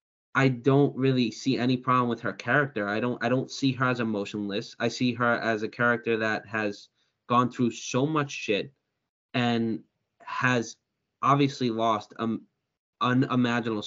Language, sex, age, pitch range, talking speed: English, male, 20-39, 110-135 Hz, 155 wpm